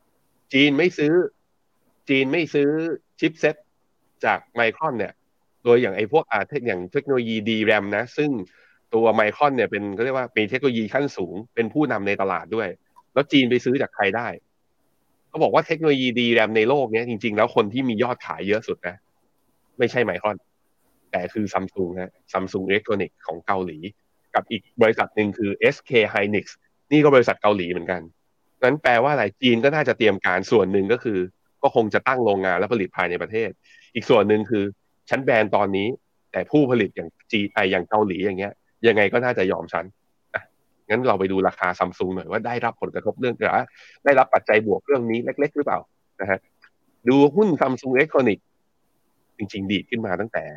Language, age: Thai, 20-39